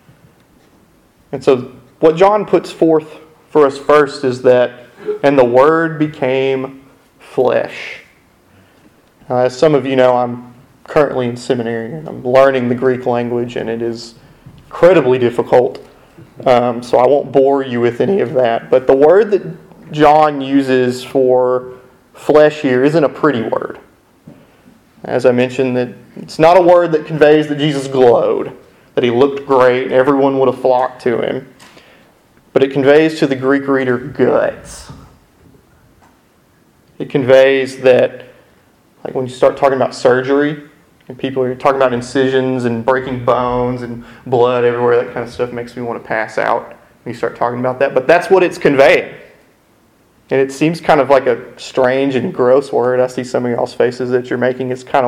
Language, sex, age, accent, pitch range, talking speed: English, male, 30-49, American, 125-145 Hz, 170 wpm